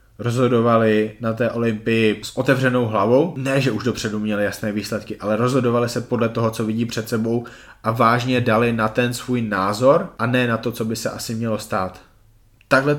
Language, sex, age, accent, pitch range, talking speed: Czech, male, 20-39, native, 110-125 Hz, 190 wpm